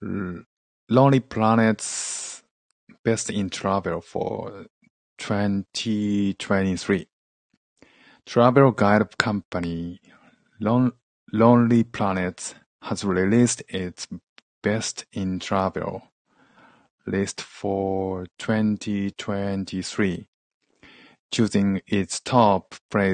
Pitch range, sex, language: 95-110 Hz, male, Japanese